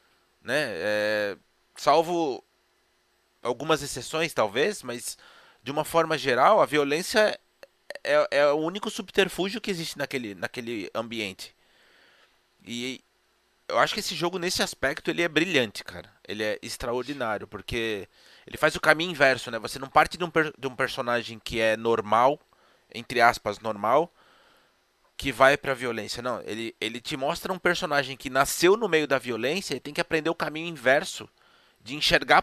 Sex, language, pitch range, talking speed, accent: male, Portuguese, 120-165 Hz, 160 wpm, Brazilian